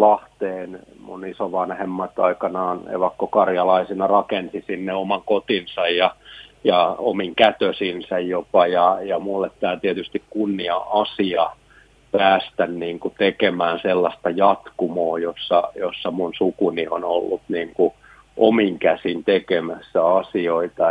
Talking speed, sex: 105 wpm, male